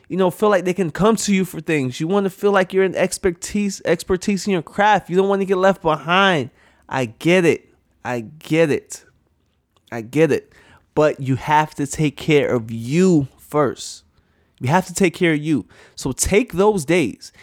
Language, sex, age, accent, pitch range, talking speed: English, male, 20-39, American, 155-210 Hz, 205 wpm